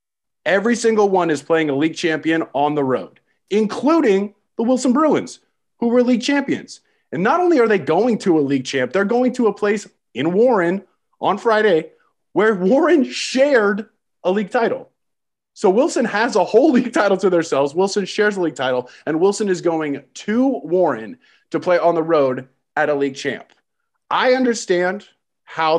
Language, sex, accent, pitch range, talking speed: English, male, American, 155-230 Hz, 175 wpm